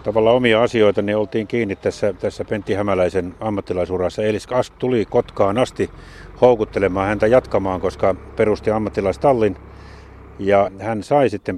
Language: Finnish